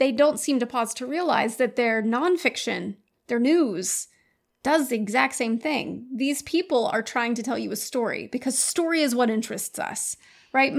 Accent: American